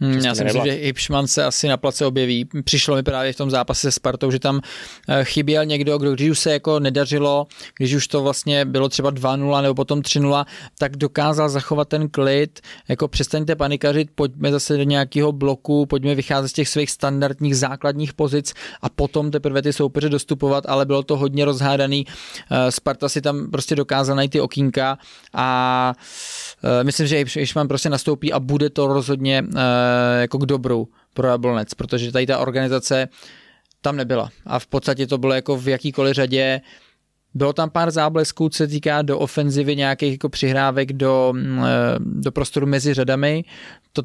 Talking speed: 170 wpm